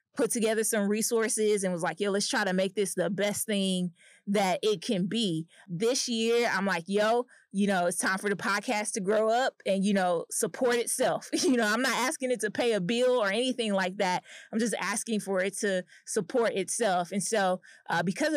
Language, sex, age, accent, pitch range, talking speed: English, female, 20-39, American, 190-225 Hz, 215 wpm